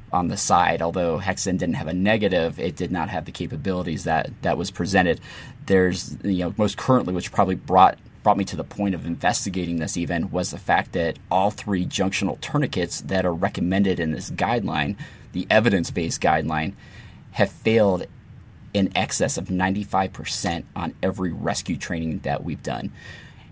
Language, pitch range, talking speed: English, 85-100 Hz, 170 wpm